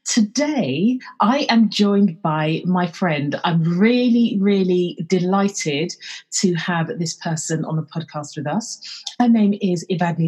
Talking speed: 140 wpm